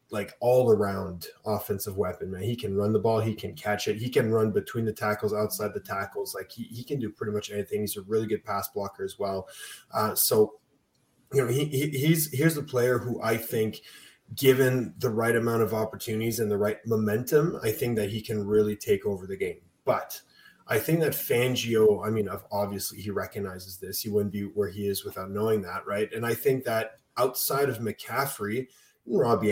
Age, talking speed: 20-39, 205 wpm